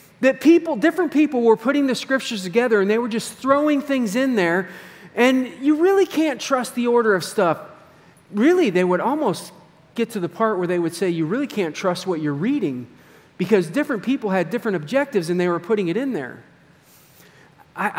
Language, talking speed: English, 195 wpm